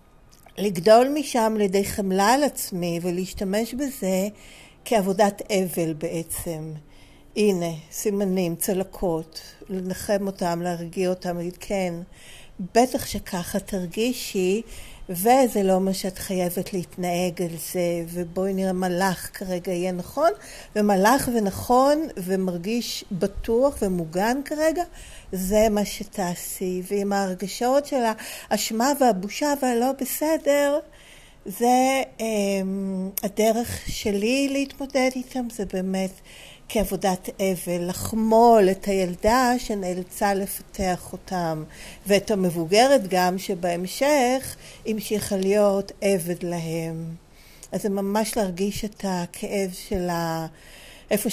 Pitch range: 180-225 Hz